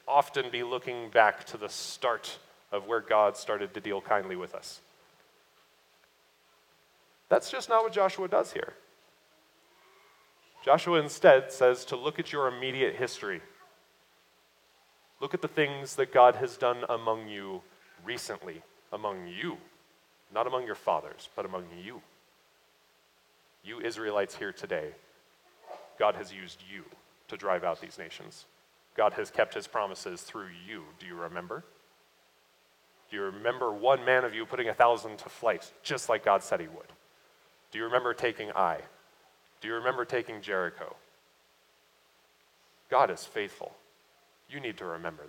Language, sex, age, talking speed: English, male, 30-49, 145 wpm